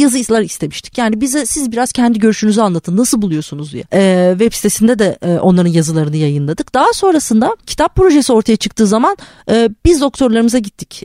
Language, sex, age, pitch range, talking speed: Turkish, female, 30-49, 185-235 Hz, 170 wpm